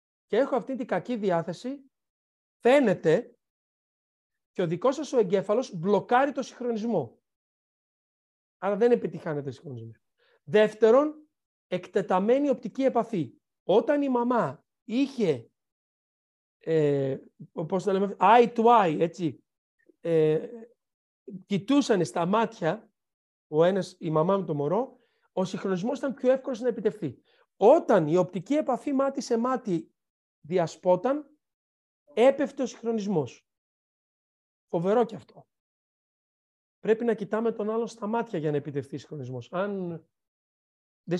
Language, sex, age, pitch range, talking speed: Greek, male, 40-59, 170-235 Hz, 120 wpm